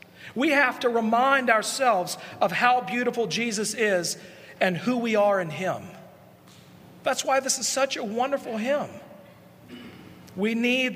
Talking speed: 140 wpm